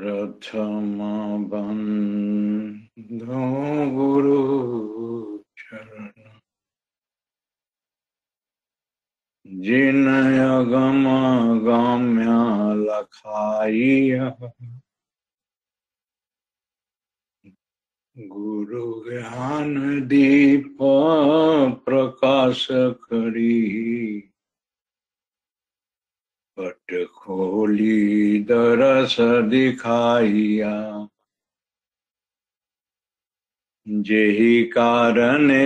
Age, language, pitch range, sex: 60-79, Hindi, 110-140 Hz, male